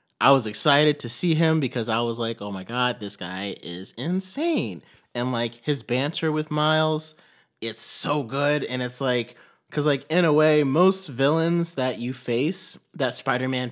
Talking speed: 180 wpm